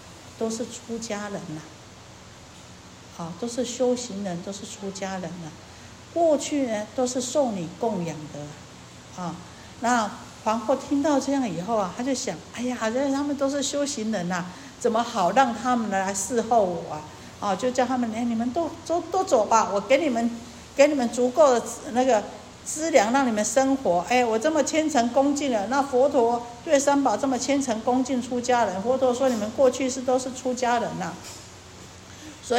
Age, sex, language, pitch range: 50-69, female, Chinese, 185-265 Hz